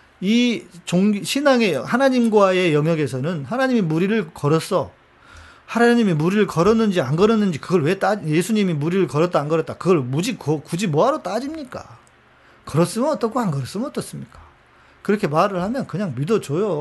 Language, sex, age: Korean, male, 40-59